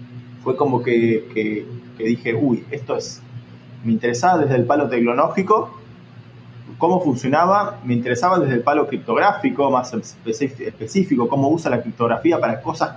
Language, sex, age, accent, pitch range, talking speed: Spanish, male, 20-39, Argentinian, 110-130 Hz, 140 wpm